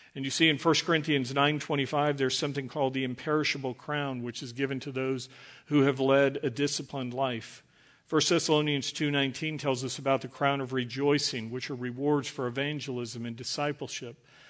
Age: 50-69